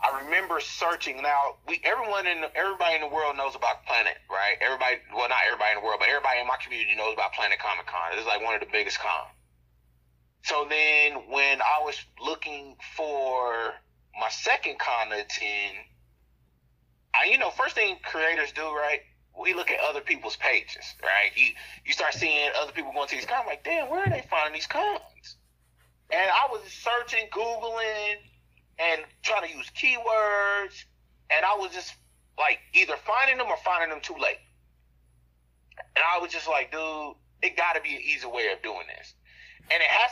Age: 30-49